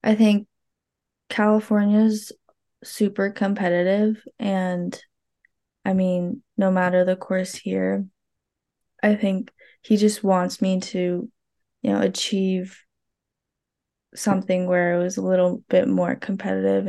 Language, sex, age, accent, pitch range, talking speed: English, female, 10-29, American, 180-195 Hz, 115 wpm